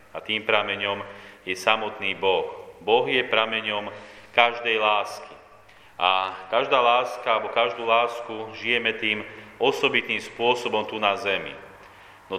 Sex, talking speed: male, 120 wpm